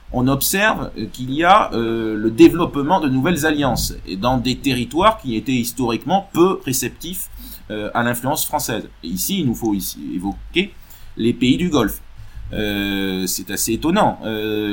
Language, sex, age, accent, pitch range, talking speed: French, male, 30-49, French, 100-125 Hz, 160 wpm